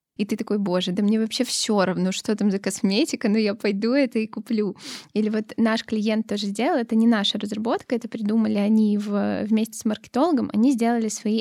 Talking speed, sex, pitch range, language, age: 205 wpm, female, 210-240 Hz, Russian, 10-29